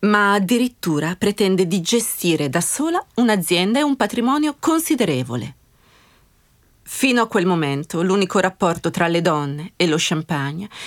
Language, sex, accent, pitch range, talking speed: Italian, female, native, 170-230 Hz, 130 wpm